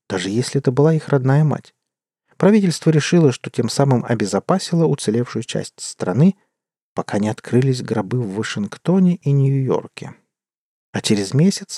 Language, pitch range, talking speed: Russian, 120-155 Hz, 140 wpm